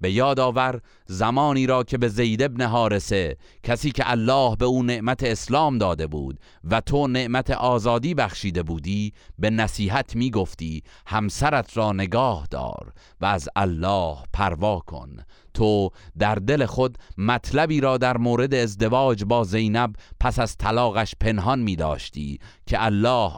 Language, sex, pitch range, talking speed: Persian, male, 95-125 Hz, 145 wpm